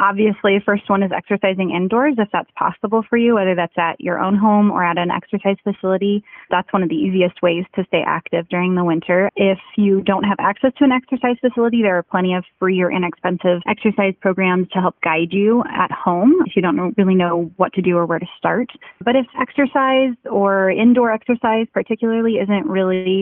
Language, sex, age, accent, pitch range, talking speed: English, female, 20-39, American, 180-215 Hz, 205 wpm